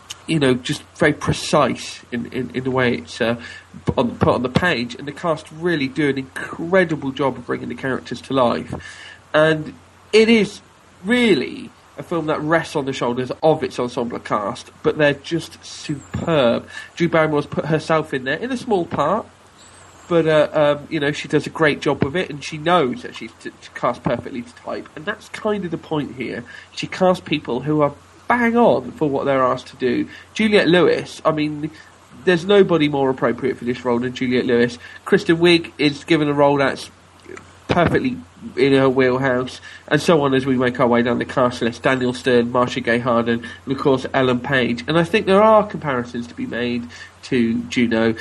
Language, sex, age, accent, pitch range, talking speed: English, male, 40-59, British, 125-160 Hz, 195 wpm